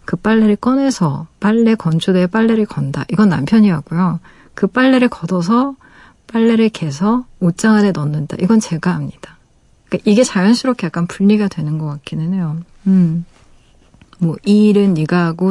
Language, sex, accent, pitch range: Korean, female, native, 170-225 Hz